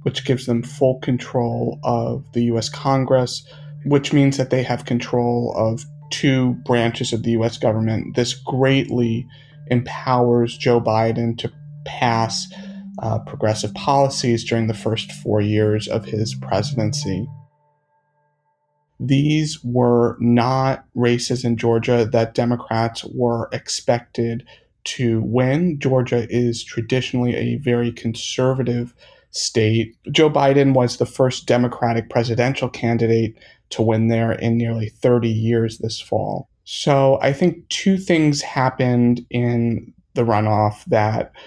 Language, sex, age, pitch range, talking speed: English, male, 30-49, 115-135 Hz, 125 wpm